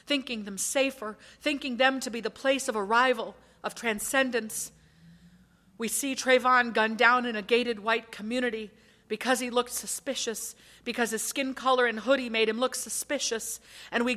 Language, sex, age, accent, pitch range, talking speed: English, female, 40-59, American, 220-275 Hz, 165 wpm